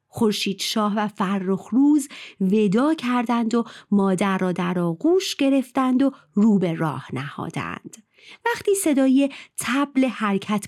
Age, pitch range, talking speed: 30-49, 185-255 Hz, 125 wpm